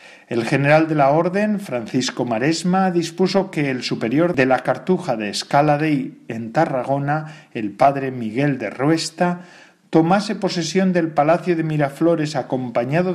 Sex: male